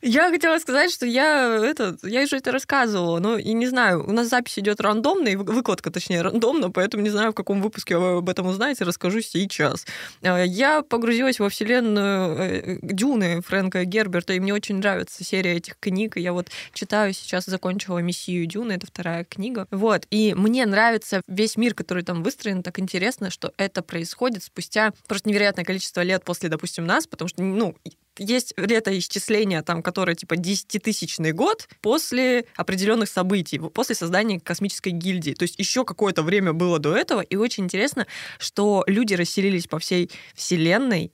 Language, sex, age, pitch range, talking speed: Russian, female, 20-39, 175-220 Hz, 170 wpm